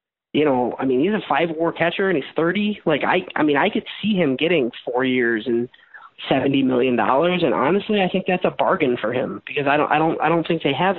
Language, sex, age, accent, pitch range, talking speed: English, male, 30-49, American, 135-175 Hz, 245 wpm